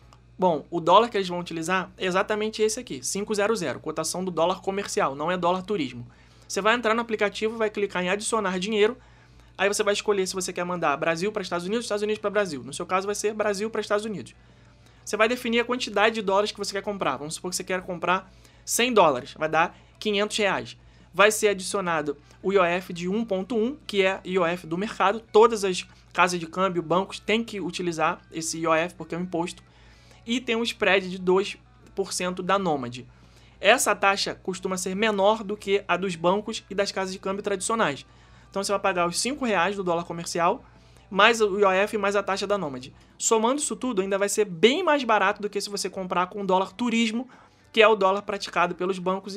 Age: 20-39